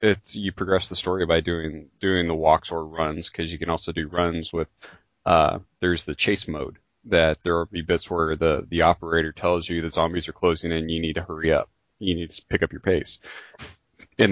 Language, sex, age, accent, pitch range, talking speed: English, male, 30-49, American, 80-95 Hz, 220 wpm